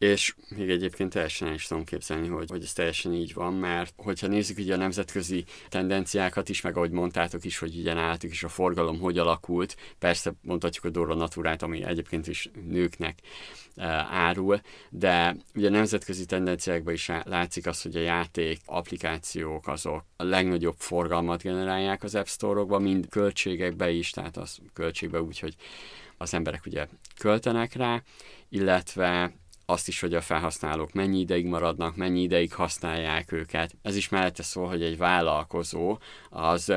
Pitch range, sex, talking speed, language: 85-95 Hz, male, 160 wpm, Hungarian